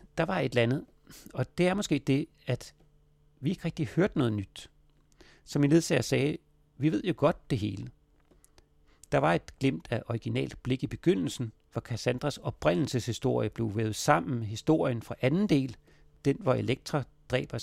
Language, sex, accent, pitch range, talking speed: Danish, male, native, 115-150 Hz, 175 wpm